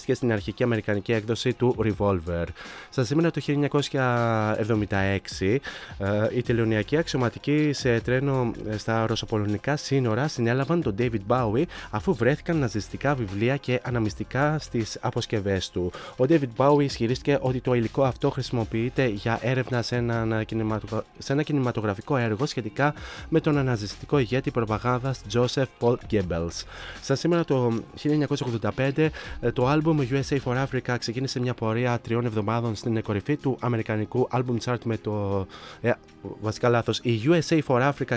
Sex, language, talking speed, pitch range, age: male, Greek, 135 wpm, 110-130 Hz, 20-39